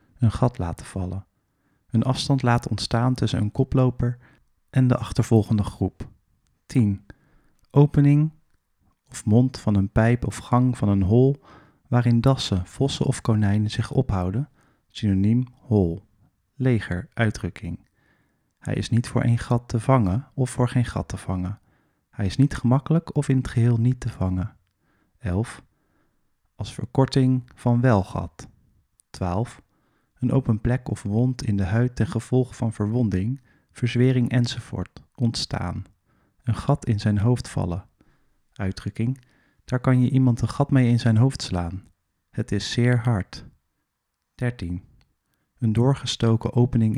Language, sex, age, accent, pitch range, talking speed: Dutch, male, 40-59, Dutch, 100-125 Hz, 140 wpm